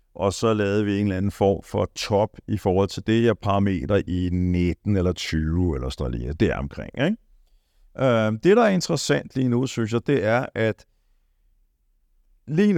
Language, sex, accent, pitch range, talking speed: Danish, male, native, 95-120 Hz, 190 wpm